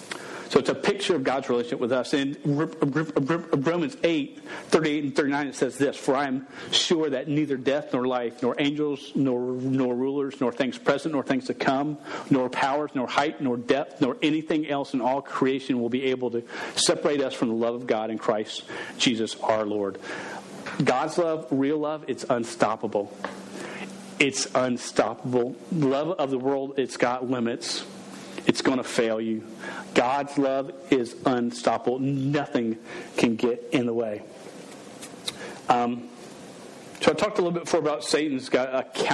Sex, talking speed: male, 165 wpm